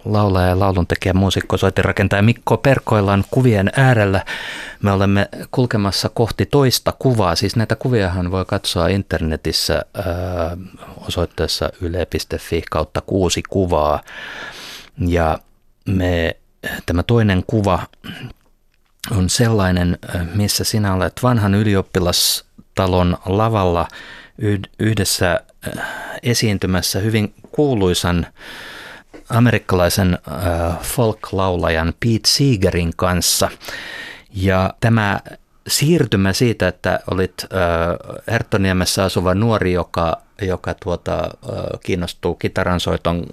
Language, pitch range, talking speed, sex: Finnish, 90-110 Hz, 85 wpm, male